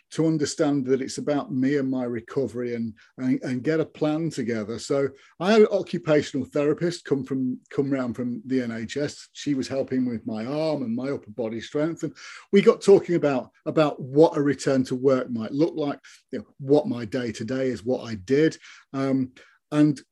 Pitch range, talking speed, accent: 125-155 Hz, 195 wpm, British